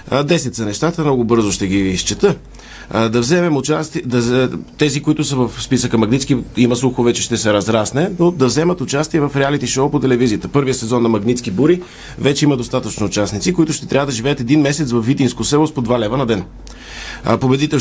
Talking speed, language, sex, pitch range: 195 wpm, Bulgarian, male, 115-140 Hz